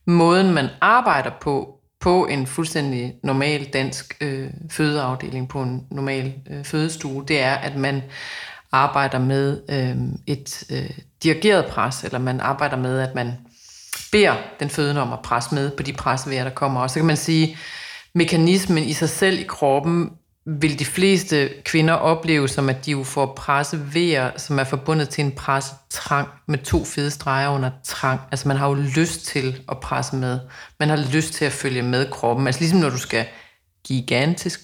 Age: 30-49